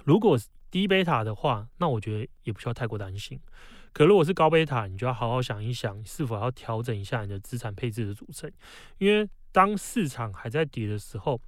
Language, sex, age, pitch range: Chinese, male, 20-39, 110-155 Hz